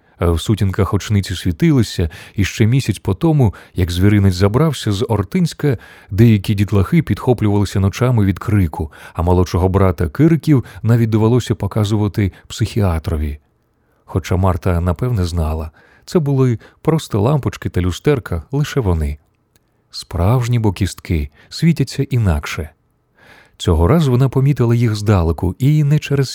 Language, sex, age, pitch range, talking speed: Ukrainian, male, 30-49, 90-120 Hz, 120 wpm